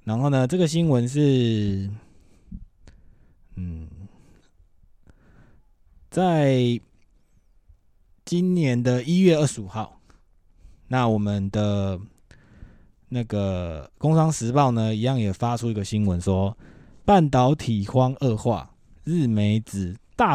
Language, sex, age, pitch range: Chinese, male, 20-39, 100-130 Hz